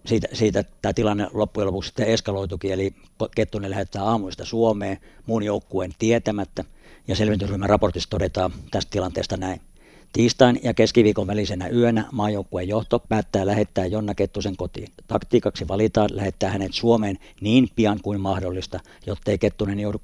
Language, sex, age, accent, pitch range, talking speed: Finnish, male, 50-69, native, 95-110 Hz, 145 wpm